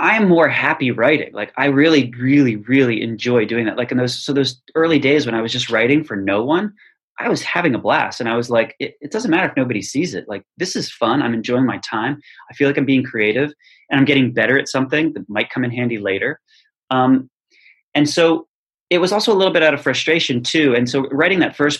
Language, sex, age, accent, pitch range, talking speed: English, male, 30-49, American, 115-135 Hz, 245 wpm